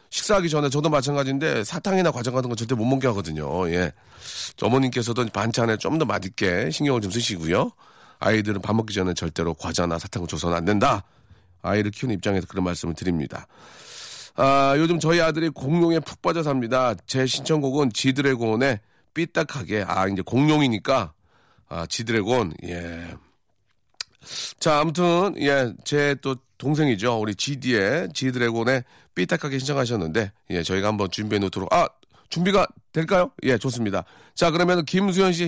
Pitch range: 110-175 Hz